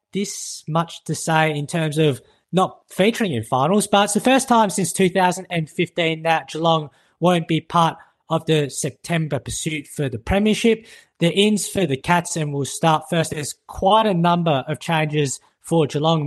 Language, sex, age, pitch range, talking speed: English, male, 20-39, 145-180 Hz, 175 wpm